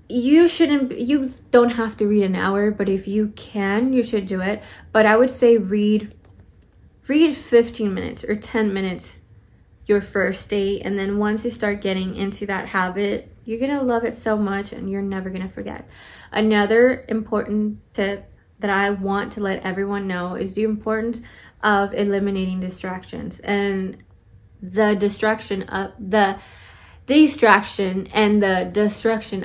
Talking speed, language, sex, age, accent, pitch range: 155 wpm, English, female, 20-39, American, 190-220 Hz